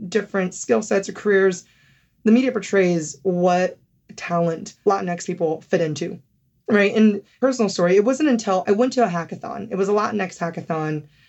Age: 20-39